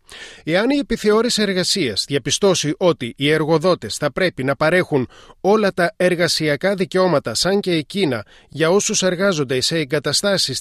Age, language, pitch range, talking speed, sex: 30-49, Greek, 135-185 Hz, 135 wpm, male